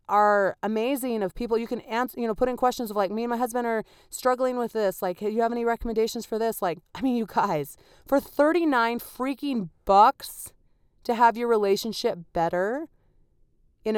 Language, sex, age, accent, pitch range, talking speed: English, female, 30-49, American, 180-245 Hz, 190 wpm